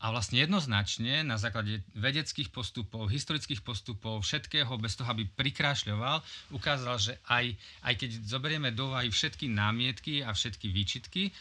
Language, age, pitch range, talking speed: Slovak, 30-49, 100-125 Hz, 140 wpm